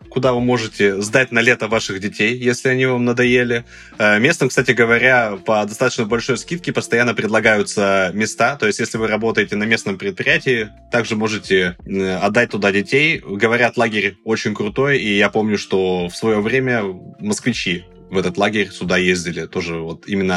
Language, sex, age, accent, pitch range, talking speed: Russian, male, 20-39, native, 100-125 Hz, 160 wpm